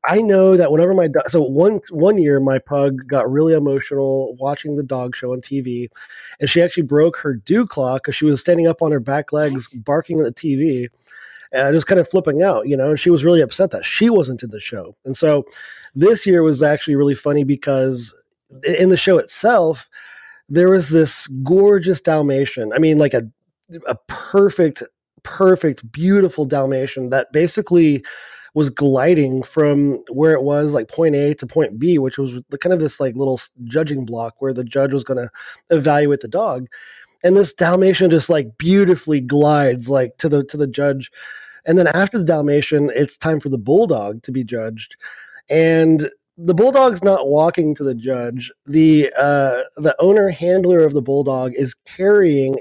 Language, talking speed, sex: English, 185 wpm, male